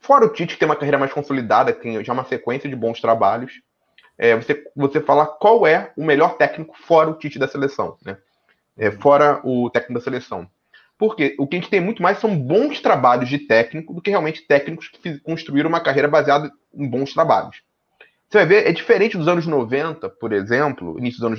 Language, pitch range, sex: Portuguese, 135-185 Hz, male